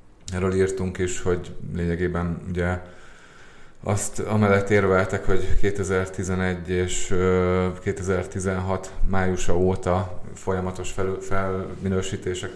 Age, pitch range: 30-49, 90-95 Hz